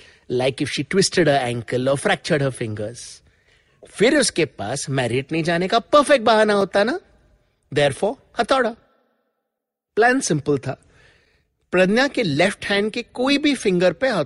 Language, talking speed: English, 145 wpm